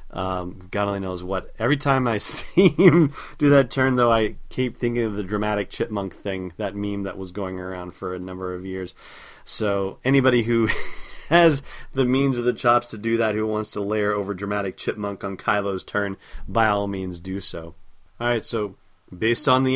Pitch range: 105-130 Hz